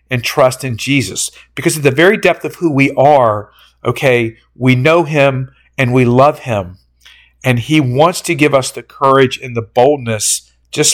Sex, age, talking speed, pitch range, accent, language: male, 50-69, 180 wpm, 115-150 Hz, American, English